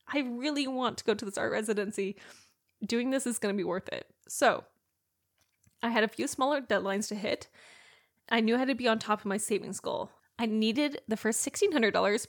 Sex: female